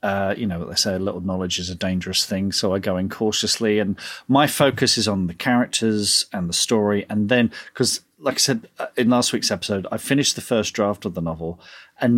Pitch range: 95-130 Hz